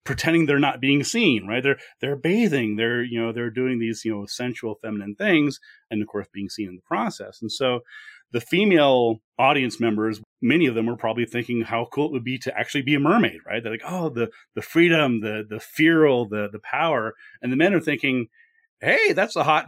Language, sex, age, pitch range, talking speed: English, male, 30-49, 115-160 Hz, 220 wpm